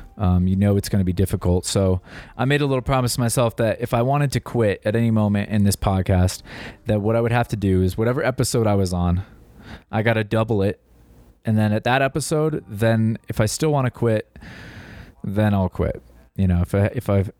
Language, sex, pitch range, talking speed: English, male, 95-125 Hz, 230 wpm